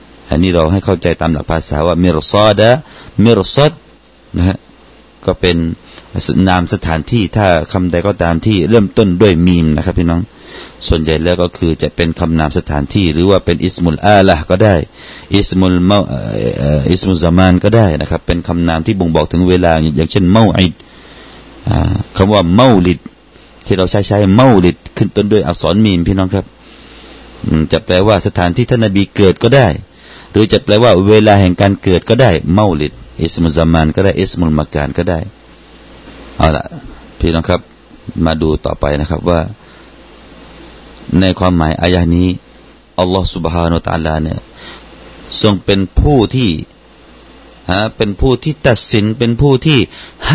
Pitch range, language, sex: 85-110 Hz, Thai, male